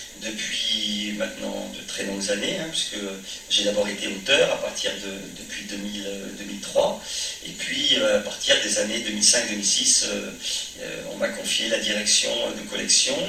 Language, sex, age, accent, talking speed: French, male, 40-59, French, 140 wpm